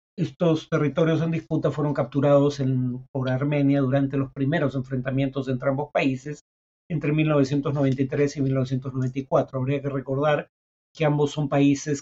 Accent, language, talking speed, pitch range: Mexican, Spanish, 135 wpm, 125-145 Hz